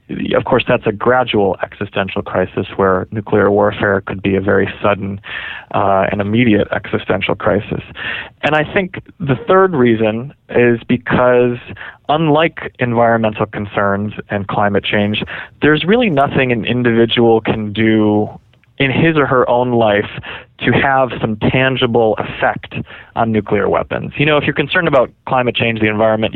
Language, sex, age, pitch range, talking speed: English, male, 20-39, 110-130 Hz, 150 wpm